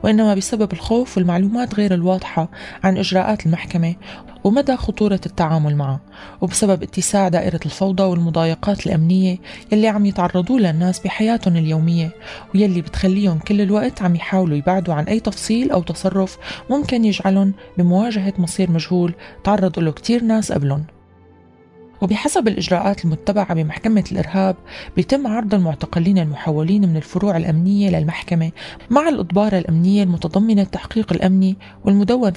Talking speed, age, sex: 125 wpm, 20-39, female